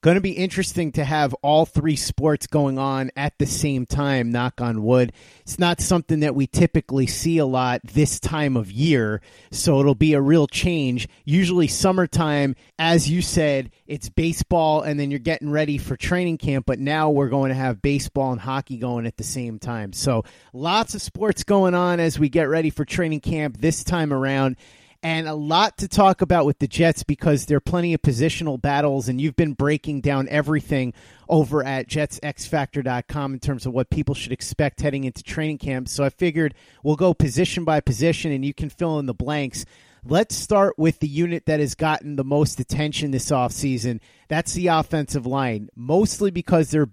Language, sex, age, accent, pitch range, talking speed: English, male, 30-49, American, 135-155 Hz, 195 wpm